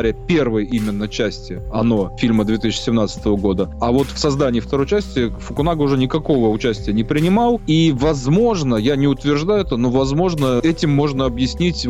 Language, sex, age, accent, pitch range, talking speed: Russian, male, 20-39, native, 115-145 Hz, 150 wpm